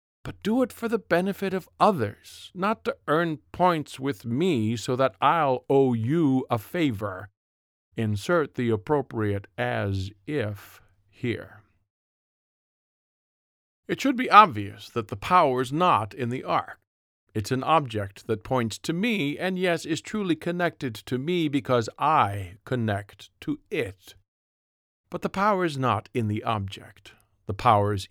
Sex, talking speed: male, 140 wpm